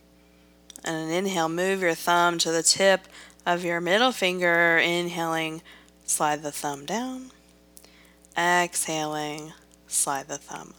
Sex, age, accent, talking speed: female, 20-39, American, 120 wpm